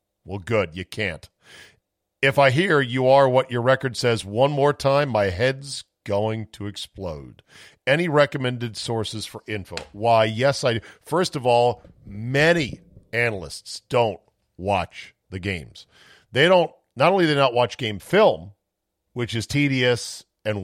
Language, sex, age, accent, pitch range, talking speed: English, male, 50-69, American, 105-140 Hz, 155 wpm